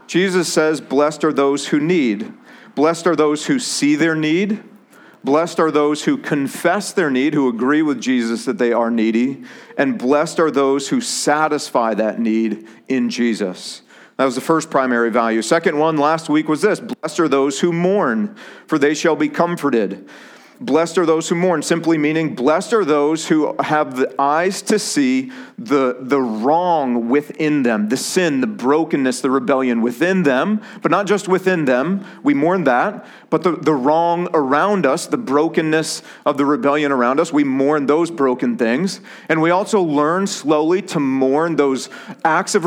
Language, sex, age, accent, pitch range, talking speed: English, male, 40-59, American, 140-180 Hz, 175 wpm